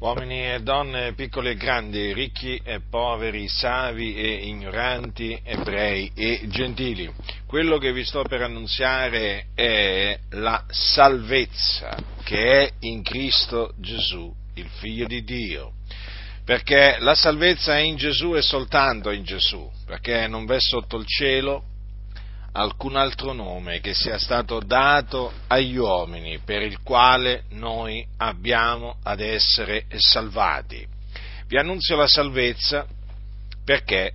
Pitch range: 100-140 Hz